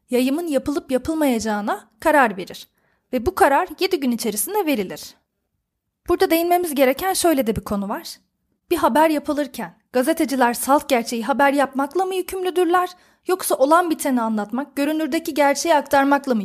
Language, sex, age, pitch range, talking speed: Turkish, female, 30-49, 245-315 Hz, 140 wpm